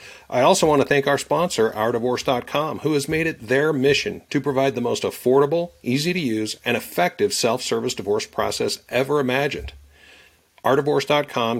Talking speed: 145 wpm